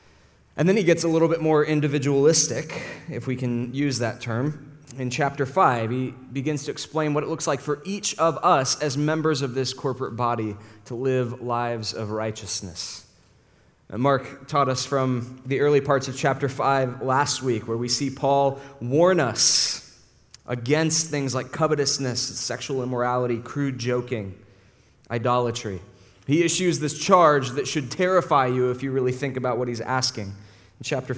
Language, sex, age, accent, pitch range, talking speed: English, male, 20-39, American, 120-145 Hz, 165 wpm